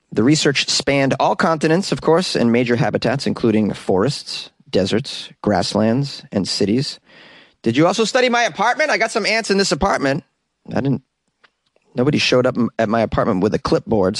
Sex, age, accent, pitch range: male, 30-49, American, 110-155 Hz